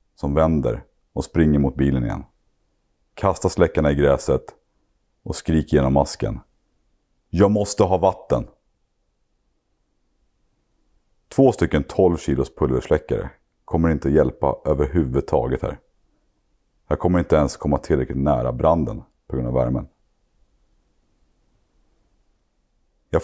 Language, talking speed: Swedish, 110 wpm